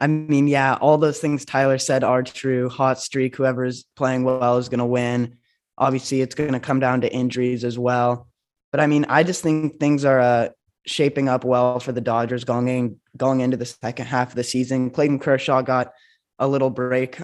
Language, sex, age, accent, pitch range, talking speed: English, male, 10-29, American, 120-135 Hz, 210 wpm